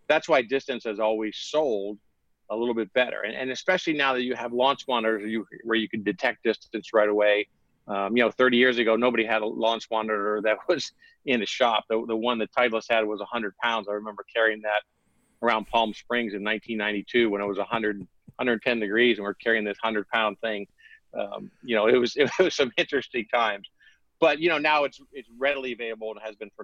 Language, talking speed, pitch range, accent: English, 220 wpm, 110-130 Hz, American